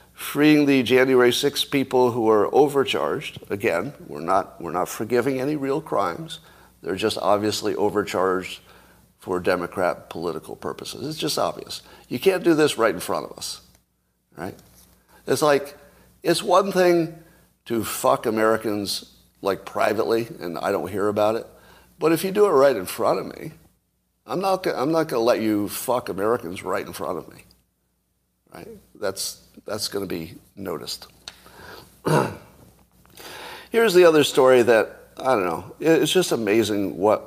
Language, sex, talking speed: English, male, 160 wpm